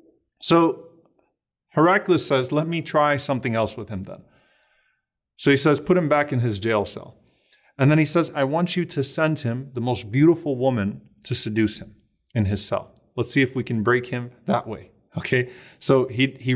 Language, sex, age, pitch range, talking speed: English, male, 30-49, 115-140 Hz, 195 wpm